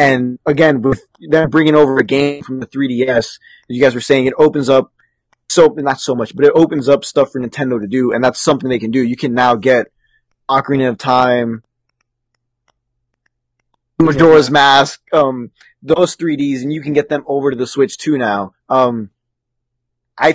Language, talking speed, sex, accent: English, 185 wpm, male, American